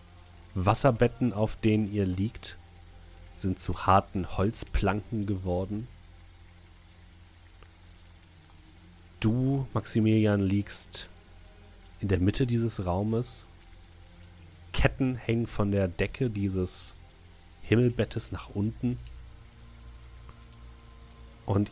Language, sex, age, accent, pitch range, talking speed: German, male, 40-59, German, 85-110 Hz, 75 wpm